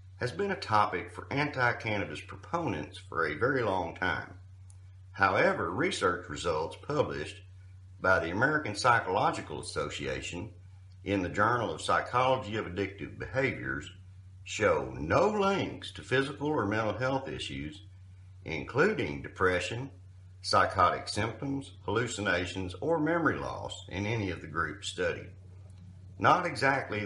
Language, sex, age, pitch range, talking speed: English, male, 50-69, 95-120 Hz, 120 wpm